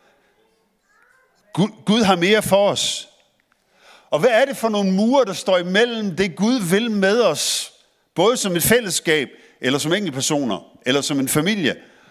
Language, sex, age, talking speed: Danish, male, 50-69, 160 wpm